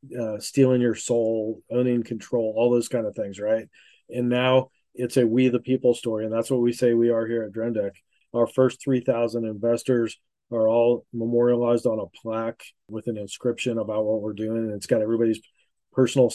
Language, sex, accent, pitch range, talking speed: English, male, American, 110-120 Hz, 190 wpm